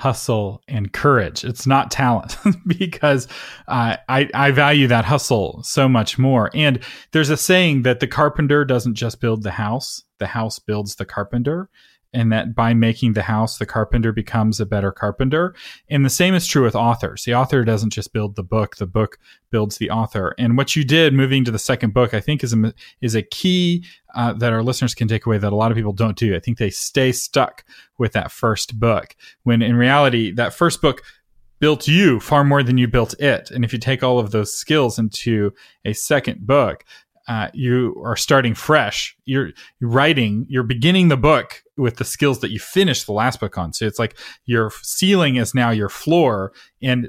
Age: 30-49